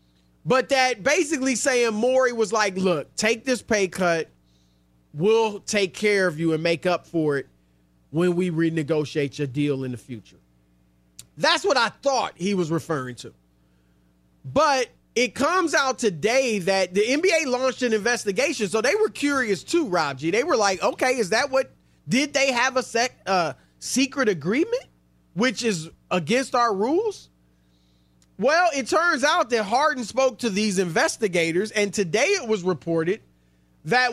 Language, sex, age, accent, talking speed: English, male, 30-49, American, 160 wpm